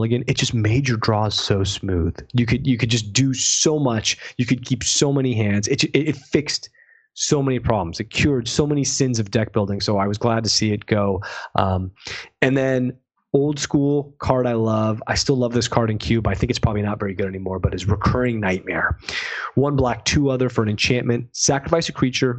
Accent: American